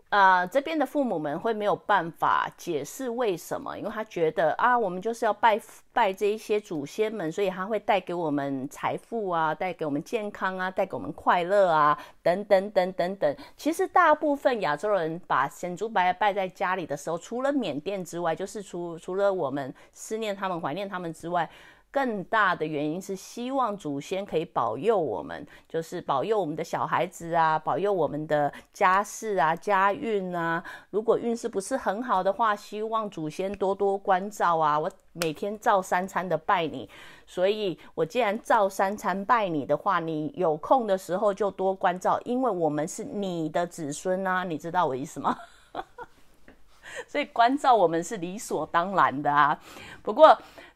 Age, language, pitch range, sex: 30-49, English, 170-220 Hz, female